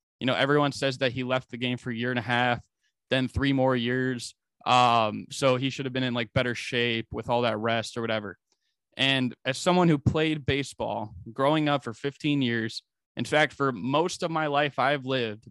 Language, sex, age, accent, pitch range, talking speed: English, male, 20-39, American, 120-145 Hz, 215 wpm